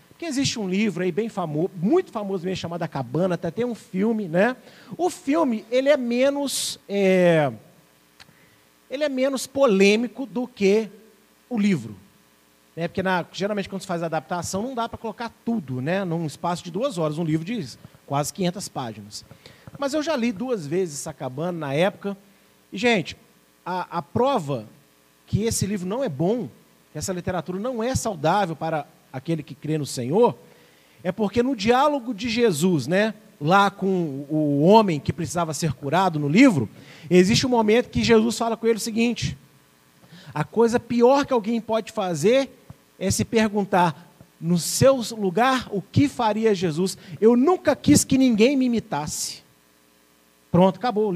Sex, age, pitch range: male, 40-59, 165-235 Hz